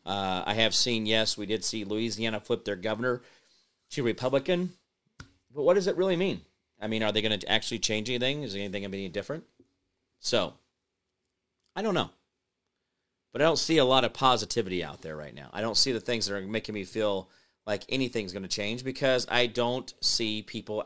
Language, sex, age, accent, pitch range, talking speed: English, male, 40-59, American, 100-120 Hz, 205 wpm